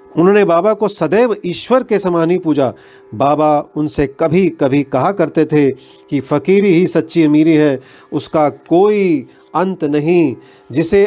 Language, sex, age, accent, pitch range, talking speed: Hindi, male, 40-59, native, 135-185 Hz, 145 wpm